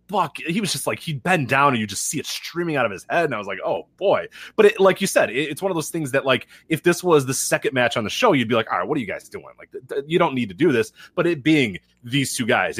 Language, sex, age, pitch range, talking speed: English, male, 30-49, 115-155 Hz, 335 wpm